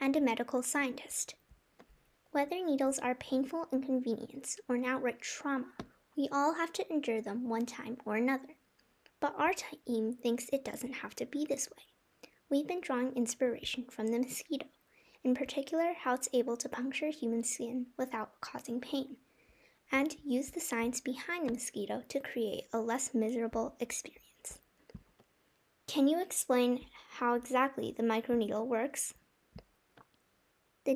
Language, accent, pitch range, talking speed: English, American, 240-285 Hz, 145 wpm